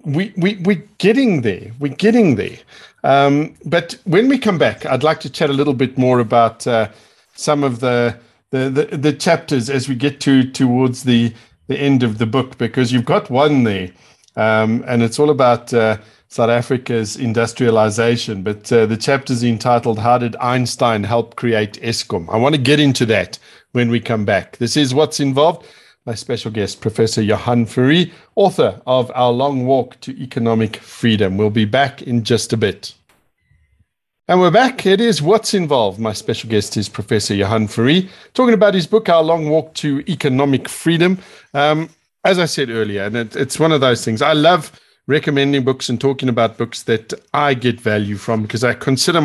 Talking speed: 190 wpm